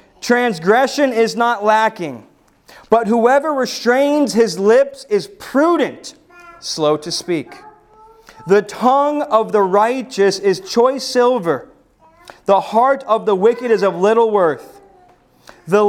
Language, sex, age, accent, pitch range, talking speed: English, male, 30-49, American, 200-290 Hz, 120 wpm